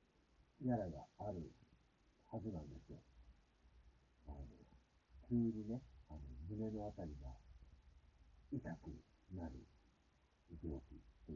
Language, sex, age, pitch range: Japanese, male, 50-69, 80-130 Hz